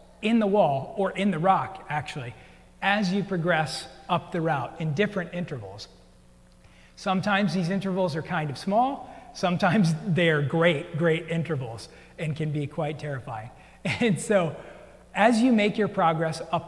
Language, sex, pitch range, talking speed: English, male, 160-190 Hz, 150 wpm